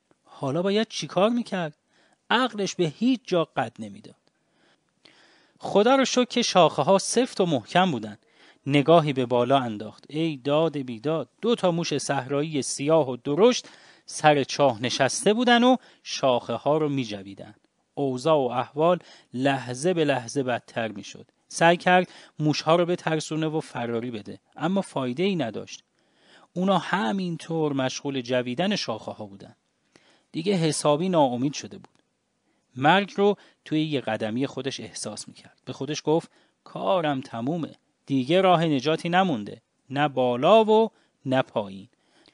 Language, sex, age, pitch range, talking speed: English, male, 40-59, 130-180 Hz, 140 wpm